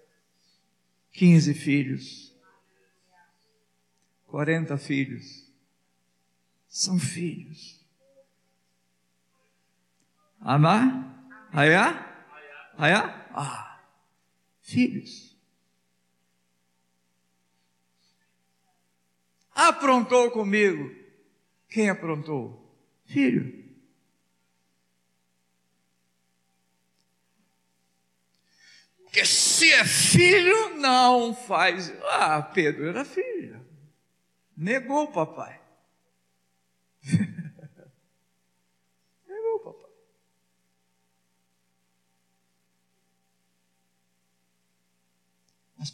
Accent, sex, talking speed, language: Brazilian, male, 45 wpm, Portuguese